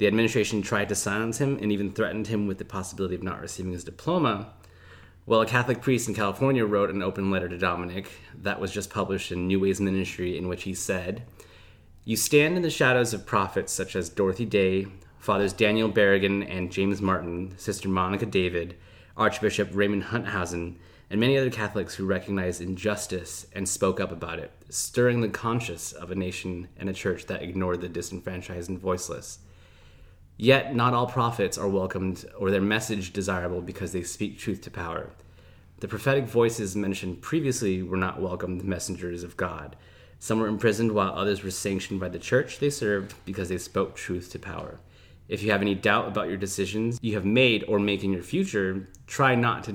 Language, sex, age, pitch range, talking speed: English, male, 20-39, 90-105 Hz, 190 wpm